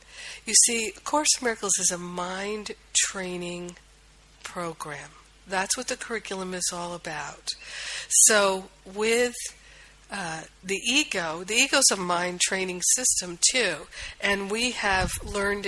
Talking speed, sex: 135 wpm, female